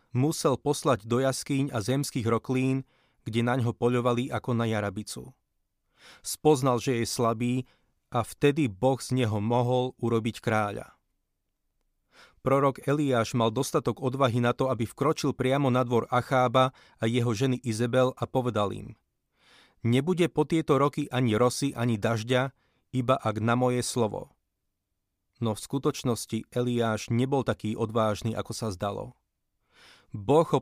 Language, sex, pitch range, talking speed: Slovak, male, 115-130 Hz, 135 wpm